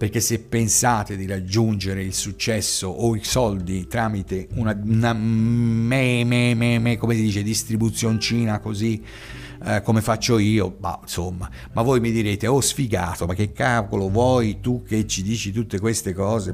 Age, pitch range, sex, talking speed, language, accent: 50-69, 95-115 Hz, male, 165 wpm, Italian, native